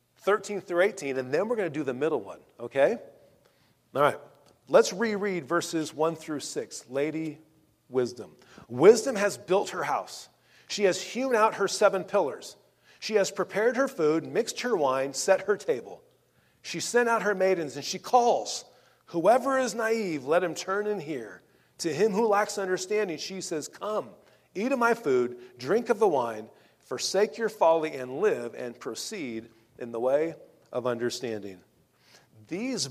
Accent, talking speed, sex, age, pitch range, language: American, 165 wpm, male, 40-59, 150-235 Hz, English